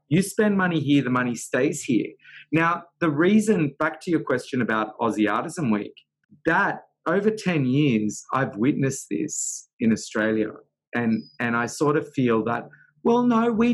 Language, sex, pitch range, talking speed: English, male, 120-155 Hz, 165 wpm